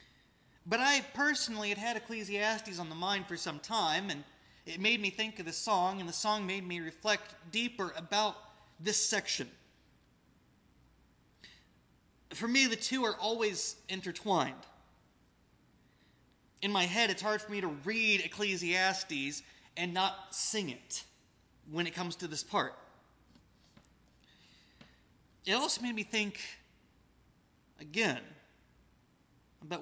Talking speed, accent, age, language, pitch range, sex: 130 wpm, American, 30-49, English, 175-215 Hz, male